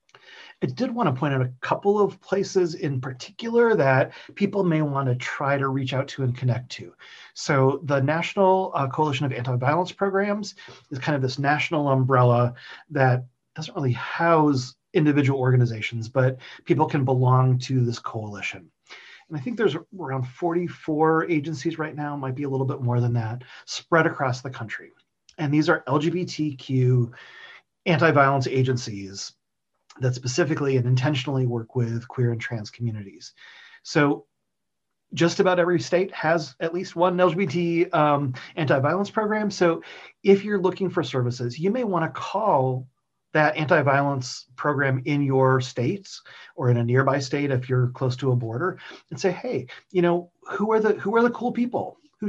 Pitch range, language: 130-175 Hz, English